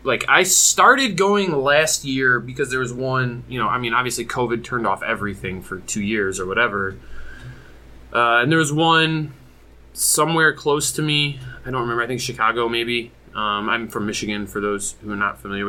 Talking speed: 190 wpm